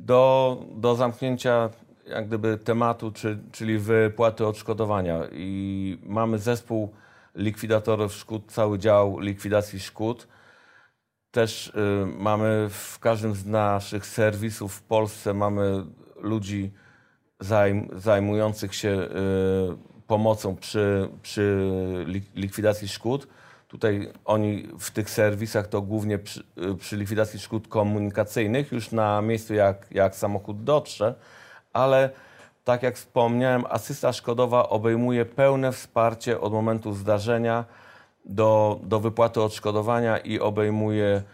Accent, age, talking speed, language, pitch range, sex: native, 40-59, 110 wpm, Polish, 100-115 Hz, male